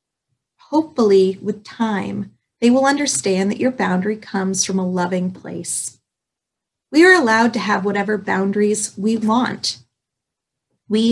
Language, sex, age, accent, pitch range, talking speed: English, female, 30-49, American, 185-235 Hz, 130 wpm